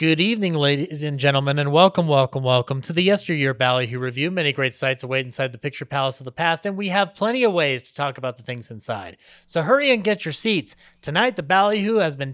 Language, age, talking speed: English, 30-49, 235 wpm